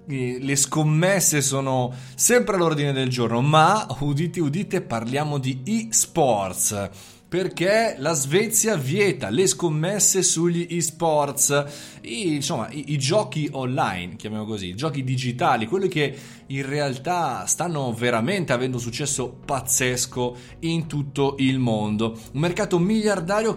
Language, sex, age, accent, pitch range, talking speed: Italian, male, 30-49, native, 125-170 Hz, 120 wpm